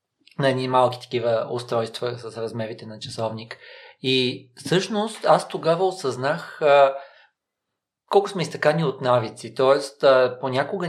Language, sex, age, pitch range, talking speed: Bulgarian, male, 40-59, 125-180 Hz, 120 wpm